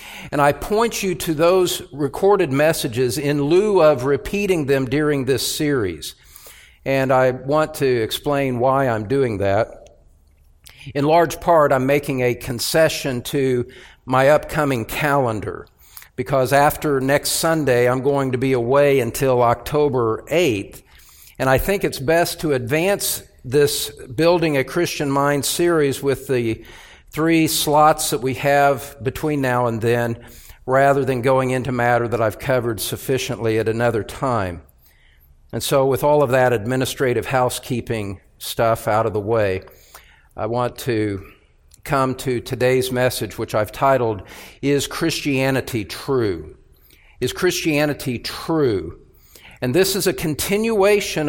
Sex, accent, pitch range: male, American, 120-150 Hz